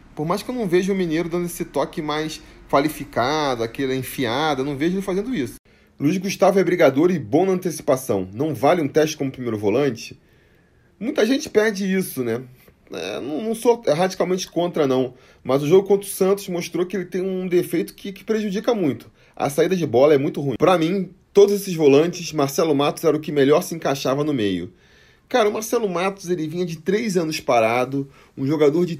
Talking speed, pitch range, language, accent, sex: 205 wpm, 140-190 Hz, Portuguese, Brazilian, male